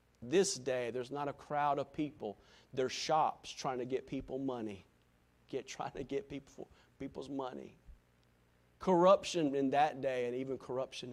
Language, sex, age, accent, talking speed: English, male, 50-69, American, 155 wpm